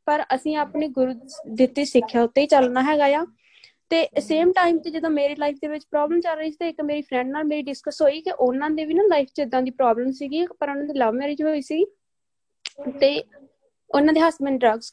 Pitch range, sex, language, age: 255-305 Hz, female, Punjabi, 20-39